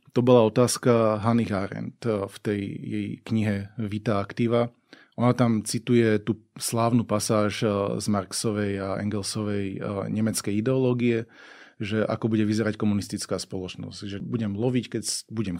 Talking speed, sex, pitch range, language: 130 wpm, male, 105-120 Hz, Slovak